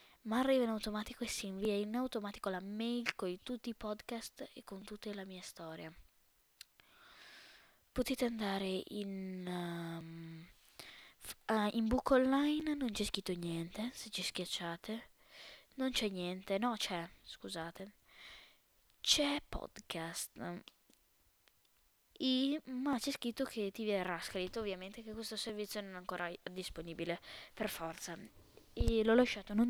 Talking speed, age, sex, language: 125 wpm, 20-39, female, Italian